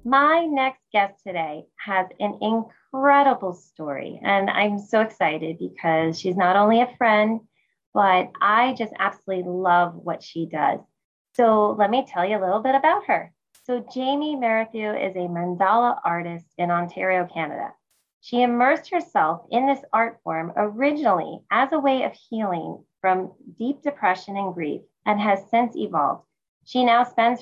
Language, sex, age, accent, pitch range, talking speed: English, female, 20-39, American, 180-240 Hz, 155 wpm